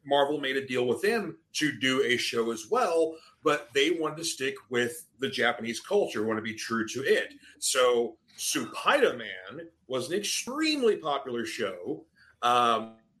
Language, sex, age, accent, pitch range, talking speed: English, male, 40-59, American, 120-160 Hz, 165 wpm